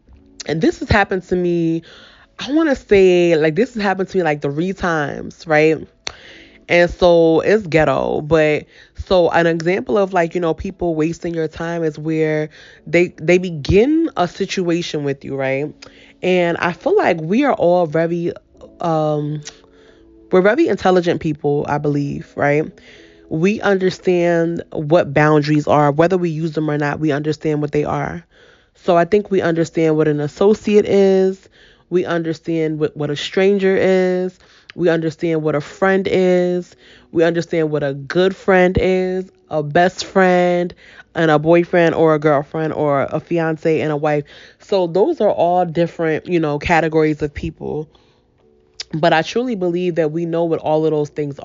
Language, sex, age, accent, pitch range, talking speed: English, female, 20-39, American, 150-180 Hz, 170 wpm